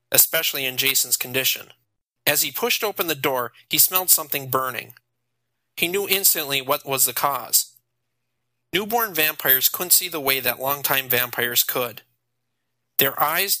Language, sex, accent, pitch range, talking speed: English, male, American, 125-165 Hz, 145 wpm